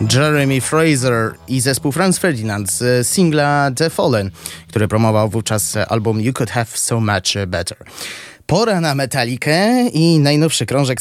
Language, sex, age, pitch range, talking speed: Polish, male, 20-39, 110-155 Hz, 140 wpm